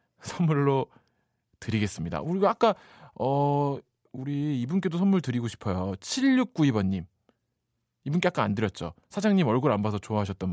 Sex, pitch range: male, 100-150 Hz